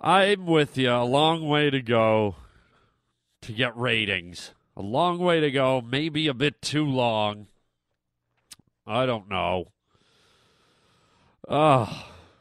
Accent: American